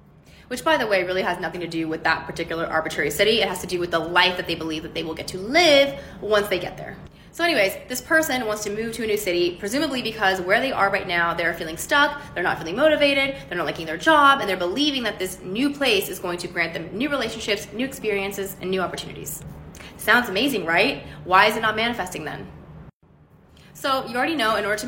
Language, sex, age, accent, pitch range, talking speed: English, female, 20-39, American, 180-260 Hz, 240 wpm